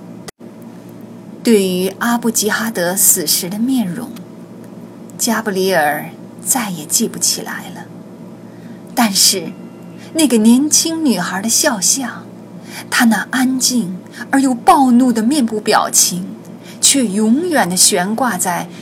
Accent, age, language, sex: native, 30-49, Chinese, female